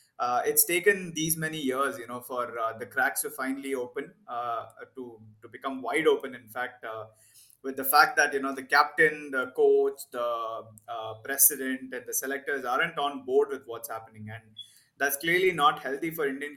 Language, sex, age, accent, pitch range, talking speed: English, male, 20-39, Indian, 125-145 Hz, 190 wpm